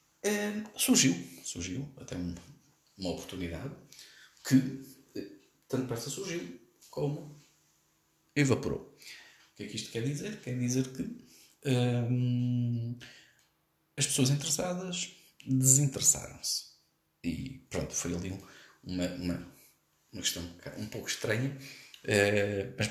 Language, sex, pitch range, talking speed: Portuguese, male, 110-155 Hz, 100 wpm